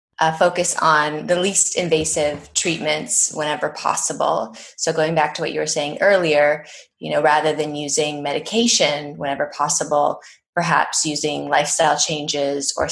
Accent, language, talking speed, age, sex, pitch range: American, English, 145 wpm, 20-39, female, 145-160 Hz